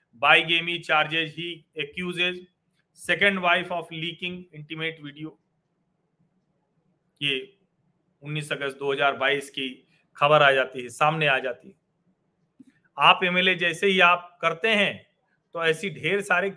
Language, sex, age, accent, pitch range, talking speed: Hindi, male, 40-59, native, 155-180 Hz, 70 wpm